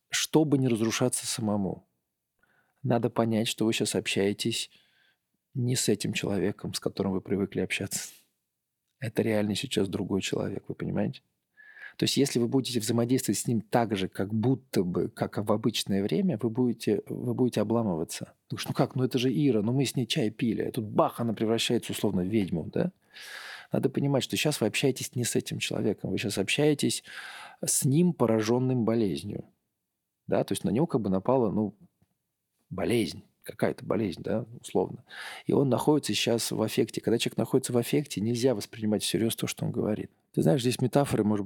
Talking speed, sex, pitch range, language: 180 wpm, male, 105-130 Hz, Russian